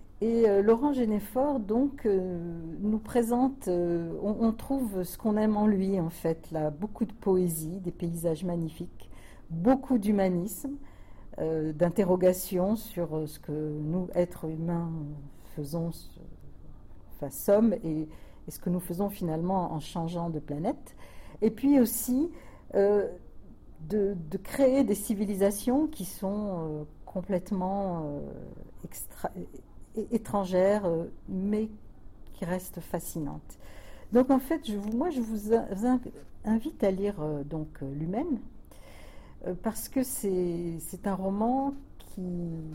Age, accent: 50-69, French